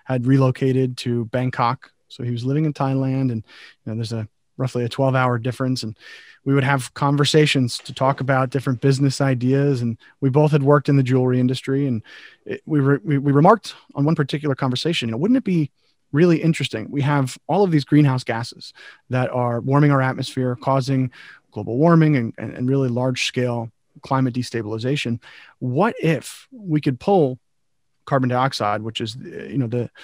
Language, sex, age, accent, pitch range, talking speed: English, male, 30-49, American, 125-140 Hz, 185 wpm